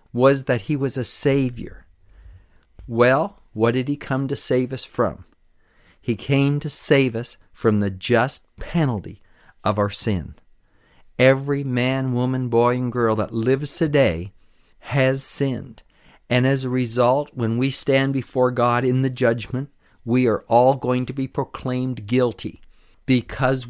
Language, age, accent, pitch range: English, 50-69, American, 110-130 Hz